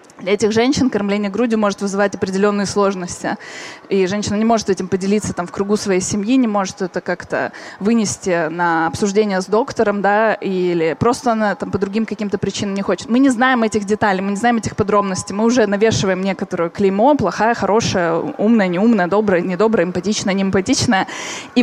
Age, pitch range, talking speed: 20-39, 200-235 Hz, 180 wpm